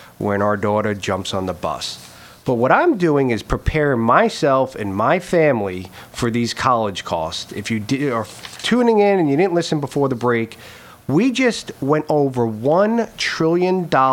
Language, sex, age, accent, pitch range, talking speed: English, male, 40-59, American, 120-200 Hz, 165 wpm